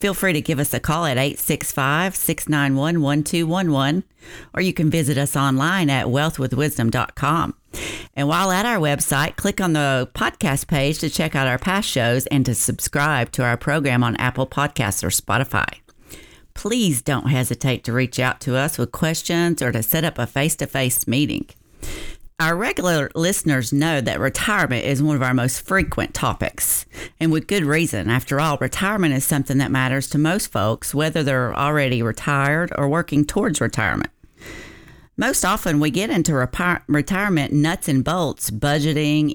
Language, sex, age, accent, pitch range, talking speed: English, female, 40-59, American, 130-165 Hz, 160 wpm